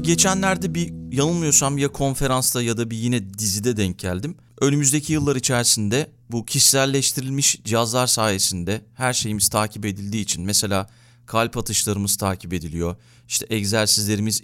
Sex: male